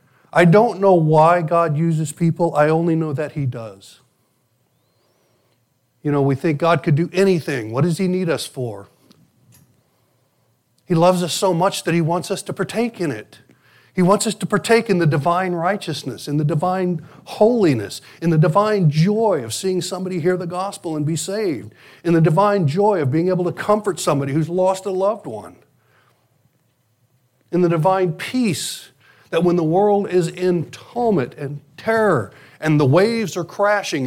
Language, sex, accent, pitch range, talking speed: English, male, American, 130-185 Hz, 175 wpm